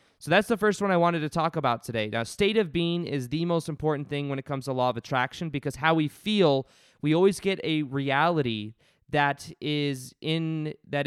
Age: 20-39